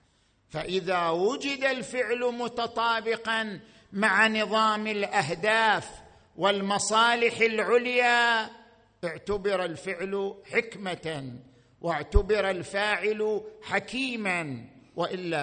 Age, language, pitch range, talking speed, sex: 50-69, Arabic, 150-235 Hz, 60 wpm, male